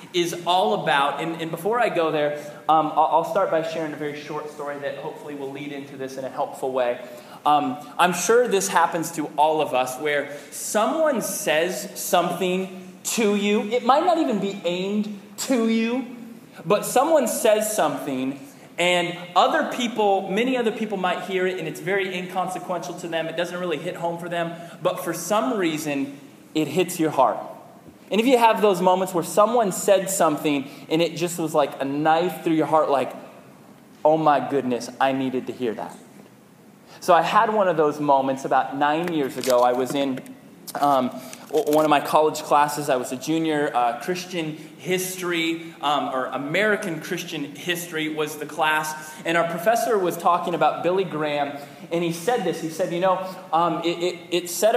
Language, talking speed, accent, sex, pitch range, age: English, 185 wpm, American, male, 145-185 Hz, 20-39